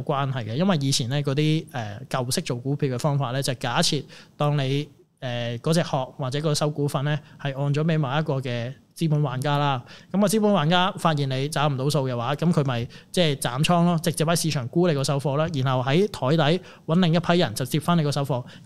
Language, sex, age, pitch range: Chinese, male, 20-39, 135-165 Hz